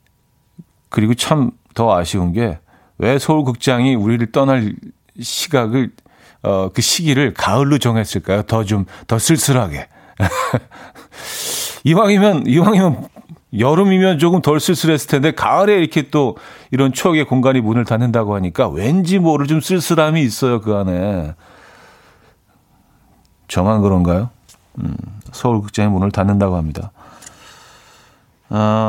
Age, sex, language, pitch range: 40-59, male, Korean, 105-155 Hz